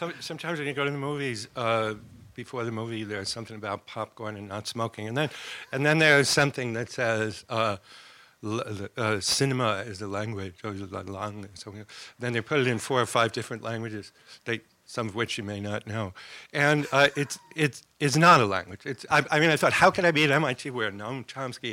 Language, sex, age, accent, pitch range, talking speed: English, male, 60-79, American, 110-140 Hz, 205 wpm